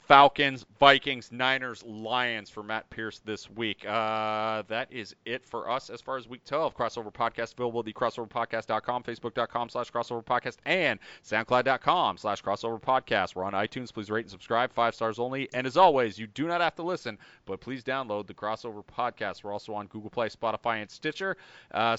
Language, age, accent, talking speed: English, 30-49, American, 185 wpm